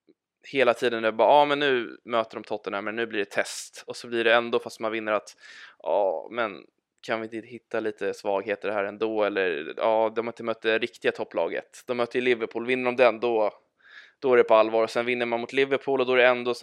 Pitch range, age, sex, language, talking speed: 115-135 Hz, 20-39, male, Swedish, 260 wpm